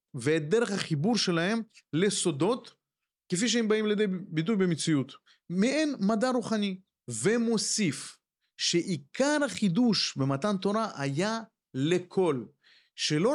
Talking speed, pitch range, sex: 100 wpm, 150-215 Hz, male